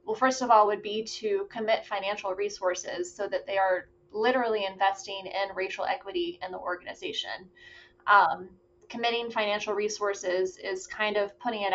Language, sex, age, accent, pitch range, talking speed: English, female, 20-39, American, 195-245 Hz, 160 wpm